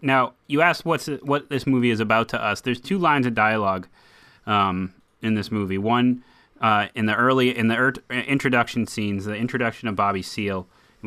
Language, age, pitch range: English, 30-49, 110-130 Hz